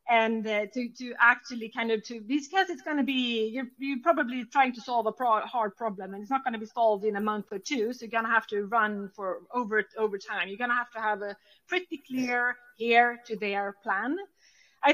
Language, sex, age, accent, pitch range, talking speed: English, female, 30-49, Swedish, 215-255 Hz, 240 wpm